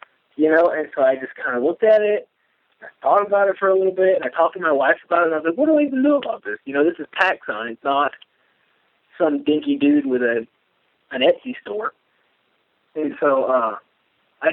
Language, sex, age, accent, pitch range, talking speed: English, male, 30-49, American, 135-175 Hz, 235 wpm